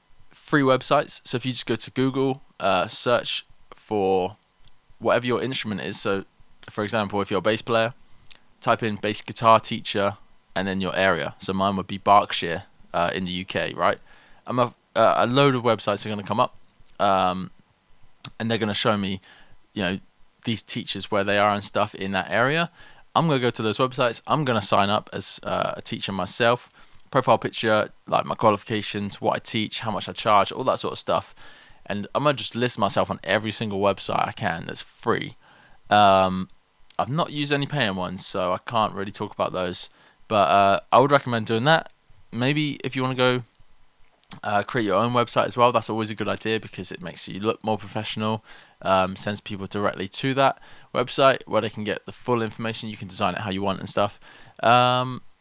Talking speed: 210 wpm